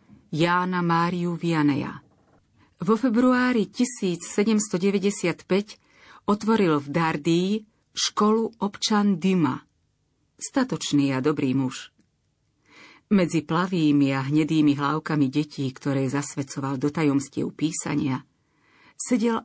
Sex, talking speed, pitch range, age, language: female, 85 wpm, 145-180 Hz, 40-59, Slovak